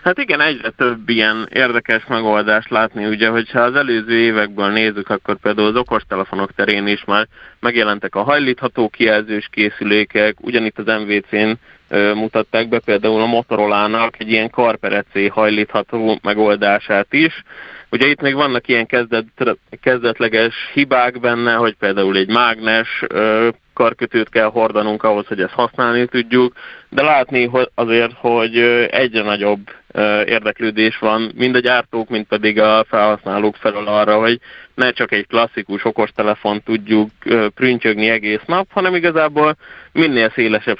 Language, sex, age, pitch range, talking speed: Hungarian, male, 30-49, 105-120 Hz, 135 wpm